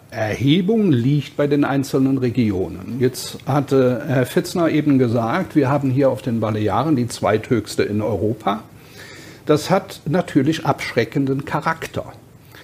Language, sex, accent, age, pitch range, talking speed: German, male, German, 60-79, 125-150 Hz, 130 wpm